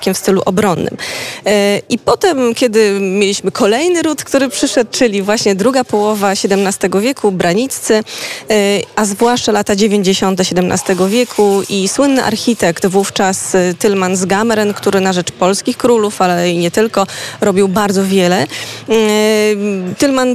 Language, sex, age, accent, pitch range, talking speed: Polish, female, 20-39, native, 190-225 Hz, 130 wpm